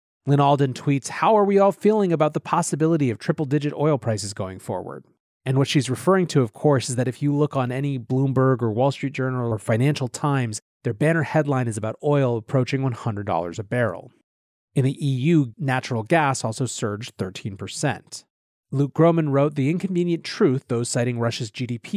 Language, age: English, 30-49